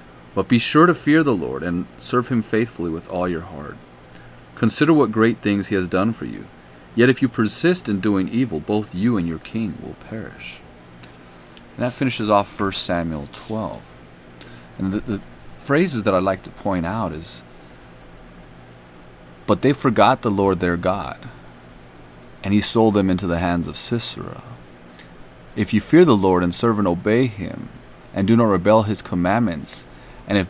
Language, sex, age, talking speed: English, male, 30-49, 175 wpm